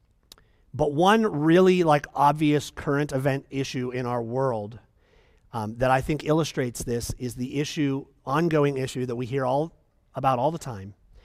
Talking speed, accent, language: 160 wpm, American, English